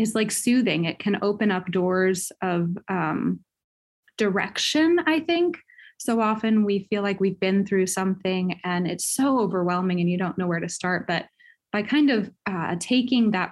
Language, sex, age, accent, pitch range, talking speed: English, female, 20-39, American, 175-220 Hz, 175 wpm